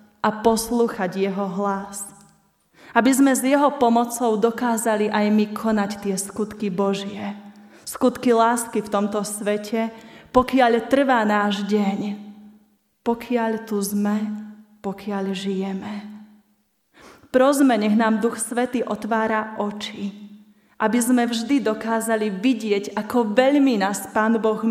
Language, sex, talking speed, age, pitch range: Slovak, female, 115 wpm, 20-39, 200-225 Hz